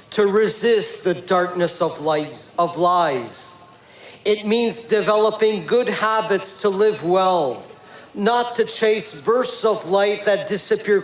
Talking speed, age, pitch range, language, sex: 120 wpm, 50-69, 175-210 Hz, French, male